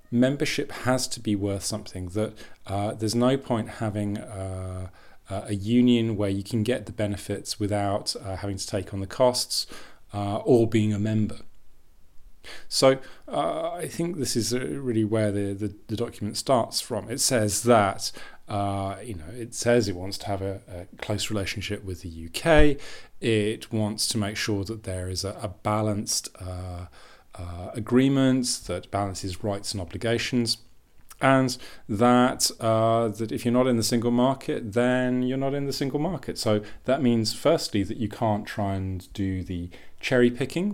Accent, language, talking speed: British, English, 170 wpm